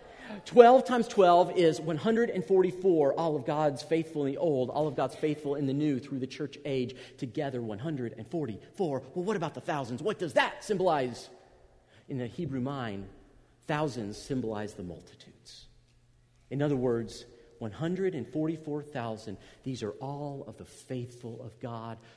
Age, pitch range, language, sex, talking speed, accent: 40-59, 120-175 Hz, English, male, 175 wpm, American